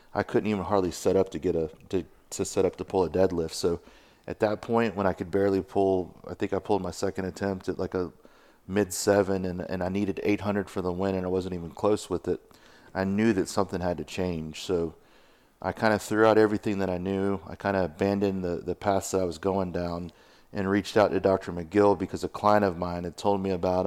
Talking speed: 245 wpm